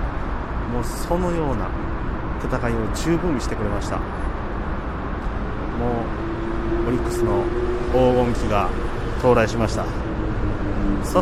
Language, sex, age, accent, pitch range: Japanese, male, 30-49, native, 90-115 Hz